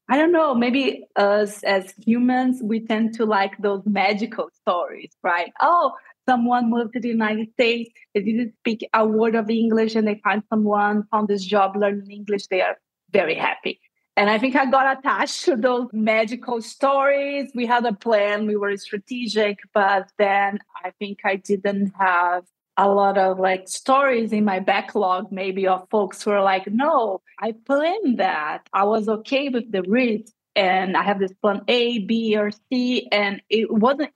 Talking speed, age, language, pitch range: 180 wpm, 20-39, English, 200-240 Hz